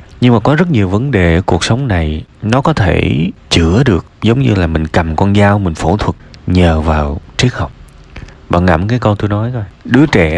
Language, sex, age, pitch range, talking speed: Vietnamese, male, 20-39, 85-120 Hz, 220 wpm